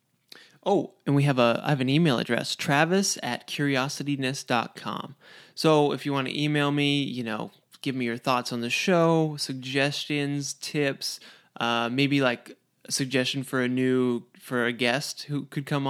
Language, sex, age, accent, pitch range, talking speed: English, male, 20-39, American, 125-145 Hz, 170 wpm